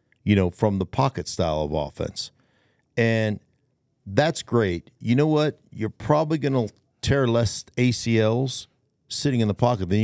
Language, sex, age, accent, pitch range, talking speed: English, male, 50-69, American, 105-135 Hz, 150 wpm